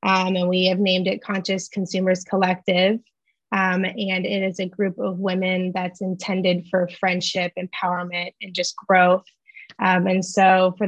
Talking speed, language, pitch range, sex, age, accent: 160 wpm, English, 185-200 Hz, female, 20-39, American